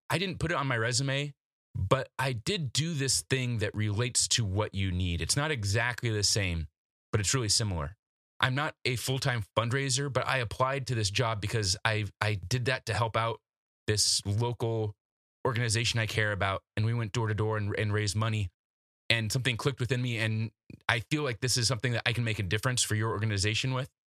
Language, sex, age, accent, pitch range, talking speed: English, male, 20-39, American, 105-130 Hz, 210 wpm